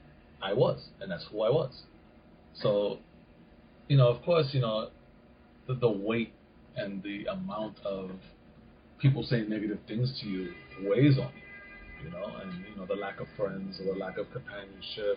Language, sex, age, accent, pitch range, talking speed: English, male, 30-49, American, 100-155 Hz, 175 wpm